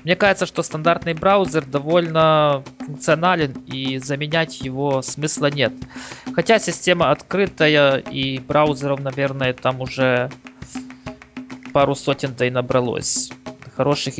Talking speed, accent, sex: 100 wpm, native, male